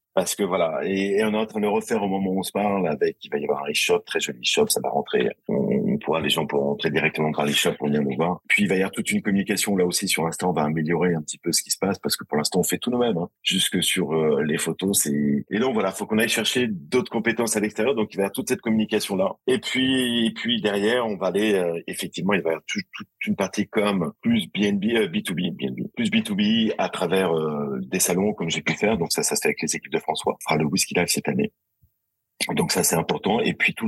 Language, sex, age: French, male, 30-49